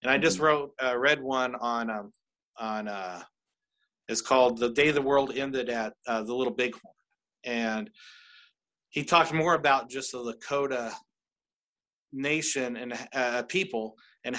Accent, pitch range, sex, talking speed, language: American, 120-145 Hz, male, 150 wpm, English